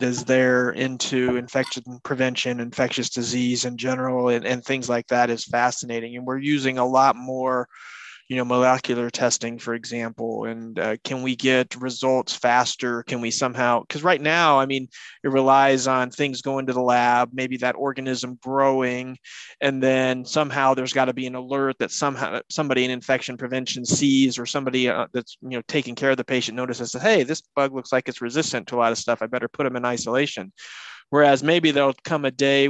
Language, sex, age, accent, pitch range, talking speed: English, male, 20-39, American, 125-135 Hz, 200 wpm